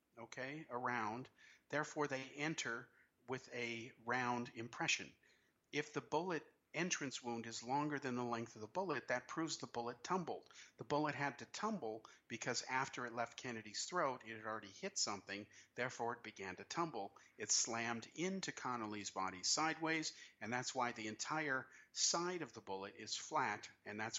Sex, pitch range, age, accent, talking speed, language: male, 105-145 Hz, 50-69, American, 165 wpm, English